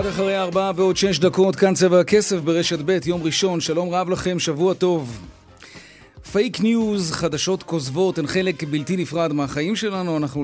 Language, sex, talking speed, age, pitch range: Hebrew, male, 165 wpm, 30-49, 150-195 Hz